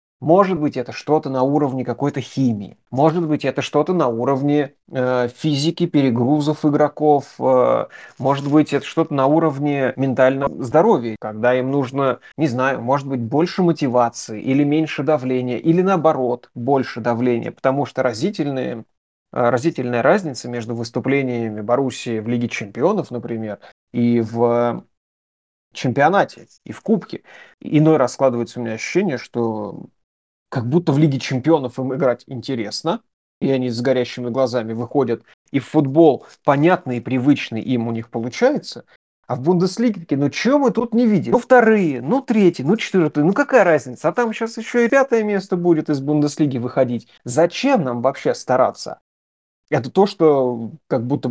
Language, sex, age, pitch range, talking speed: Russian, male, 30-49, 120-155 Hz, 150 wpm